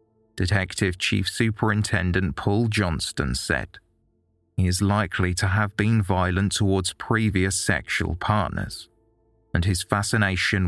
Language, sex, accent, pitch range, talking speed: English, male, British, 90-110 Hz, 110 wpm